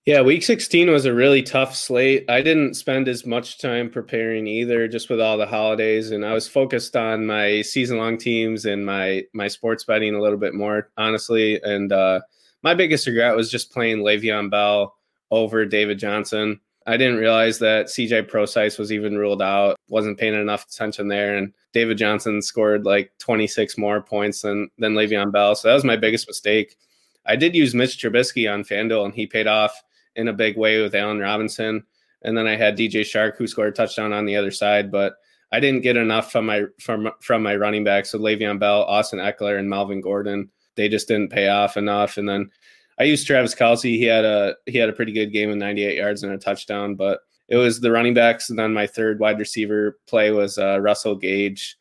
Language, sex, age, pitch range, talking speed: English, male, 20-39, 105-115 Hz, 210 wpm